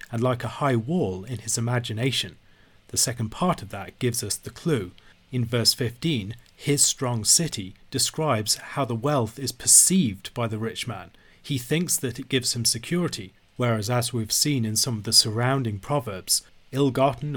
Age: 40-59